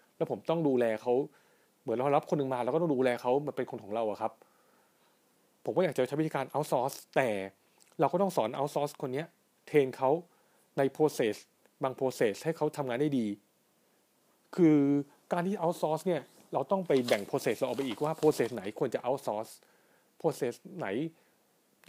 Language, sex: Thai, male